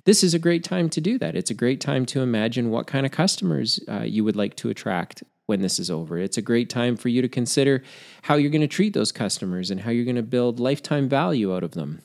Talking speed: 260 wpm